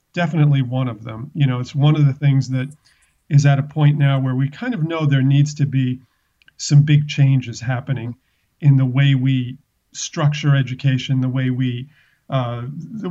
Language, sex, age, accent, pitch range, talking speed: English, male, 40-59, American, 135-155 Hz, 190 wpm